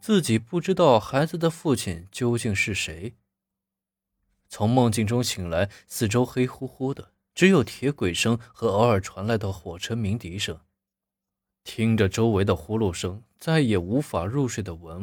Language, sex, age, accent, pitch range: Chinese, male, 20-39, native, 95-130 Hz